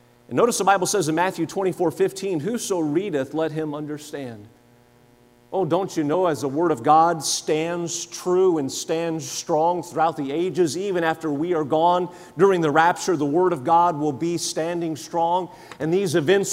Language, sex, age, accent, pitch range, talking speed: English, male, 40-59, American, 140-185 Hz, 180 wpm